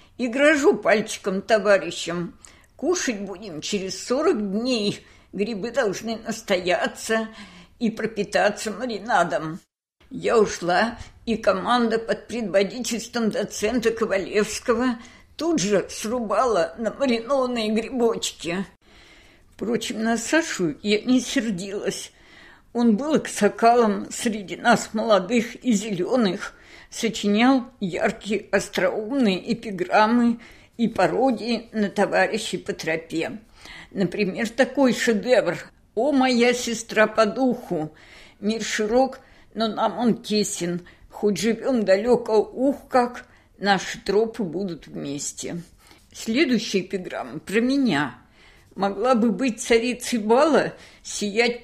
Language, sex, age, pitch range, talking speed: Russian, female, 50-69, 200-240 Hz, 100 wpm